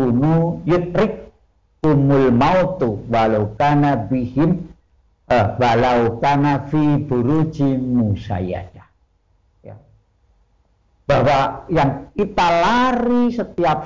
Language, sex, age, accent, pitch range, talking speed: Indonesian, male, 50-69, native, 115-160 Hz, 60 wpm